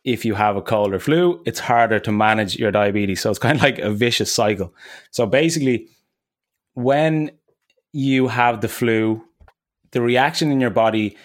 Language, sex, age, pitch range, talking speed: English, male, 20-39, 110-130 Hz, 175 wpm